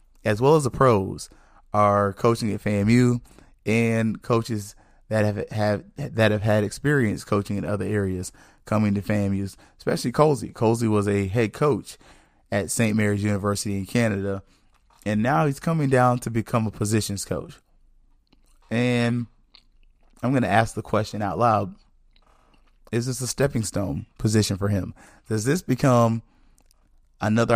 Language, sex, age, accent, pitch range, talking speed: English, male, 20-39, American, 100-120 Hz, 150 wpm